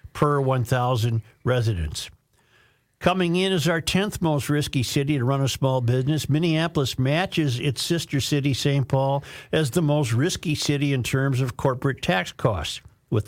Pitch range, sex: 115-150 Hz, male